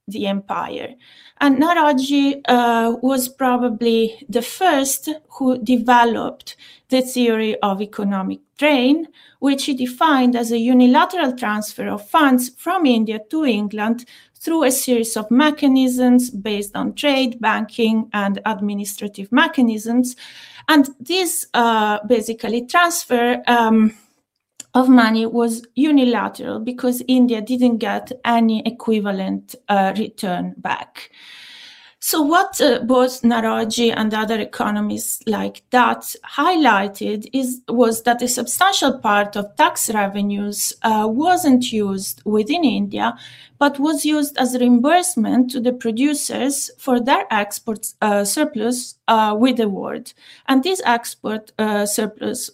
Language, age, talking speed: English, 30-49, 125 wpm